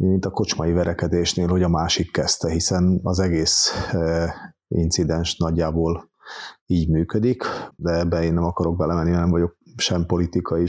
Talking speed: 145 wpm